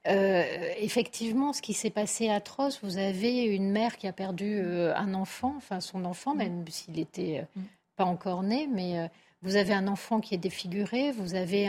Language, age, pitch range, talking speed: French, 40-59, 195-240 Hz, 180 wpm